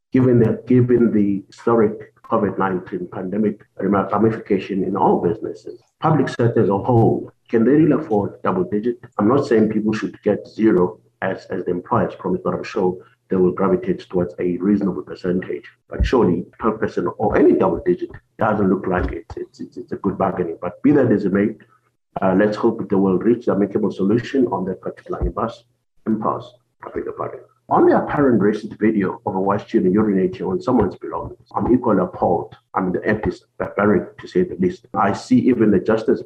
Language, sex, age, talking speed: English, male, 50-69, 190 wpm